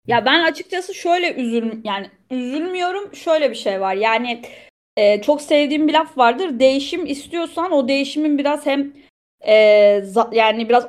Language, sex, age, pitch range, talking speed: Turkish, female, 30-49, 220-295 Hz, 155 wpm